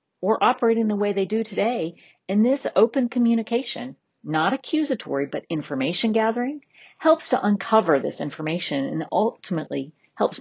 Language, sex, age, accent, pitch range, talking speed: English, female, 40-59, American, 160-235 Hz, 140 wpm